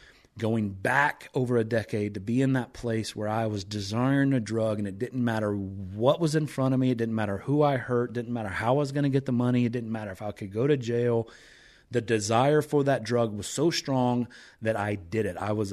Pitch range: 110-130 Hz